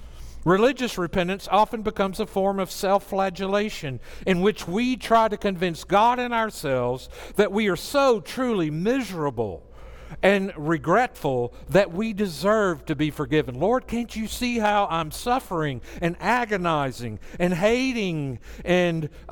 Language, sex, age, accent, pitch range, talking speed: English, male, 50-69, American, 140-200 Hz, 135 wpm